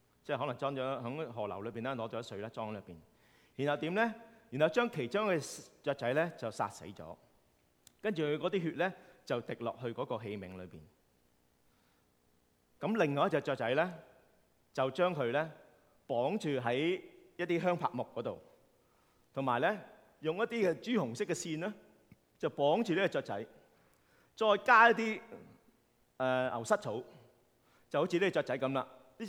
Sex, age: male, 30-49